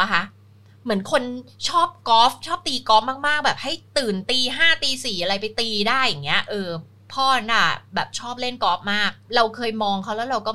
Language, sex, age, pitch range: Thai, female, 20-39, 165-230 Hz